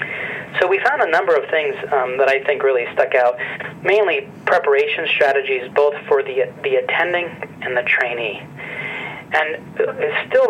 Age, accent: 30-49, American